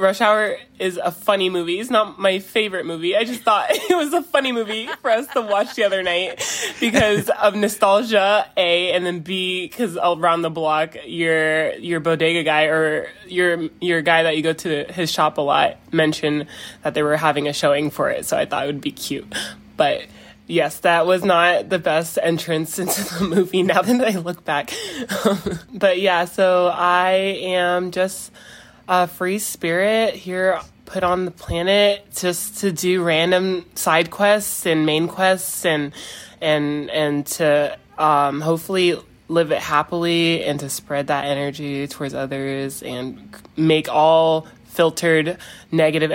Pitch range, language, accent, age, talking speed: 150-185 Hz, English, American, 20-39, 170 wpm